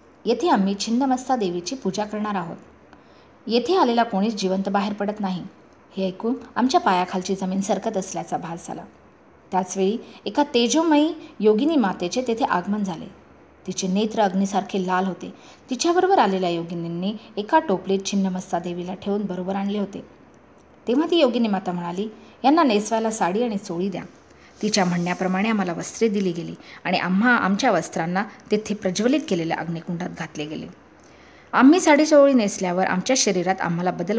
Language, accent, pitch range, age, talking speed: English, Indian, 185-245 Hz, 20-39, 120 wpm